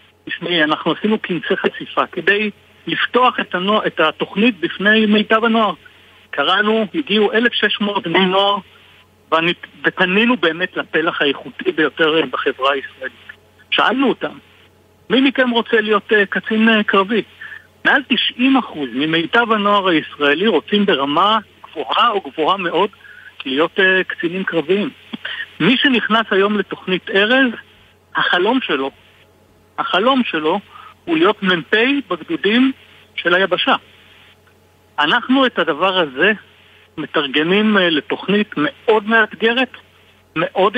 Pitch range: 155-220 Hz